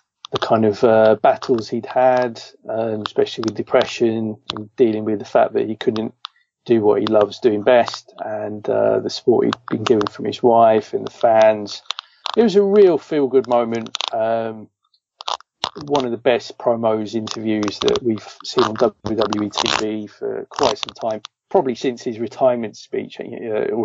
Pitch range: 110-120 Hz